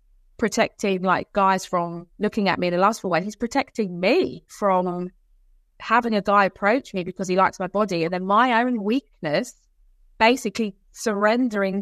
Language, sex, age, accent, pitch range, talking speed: English, female, 20-39, British, 190-250 Hz, 160 wpm